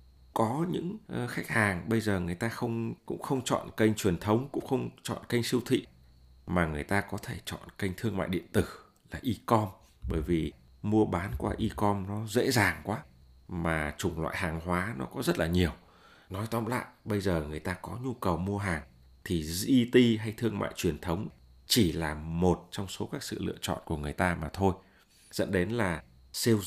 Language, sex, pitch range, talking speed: Vietnamese, male, 80-105 Hz, 205 wpm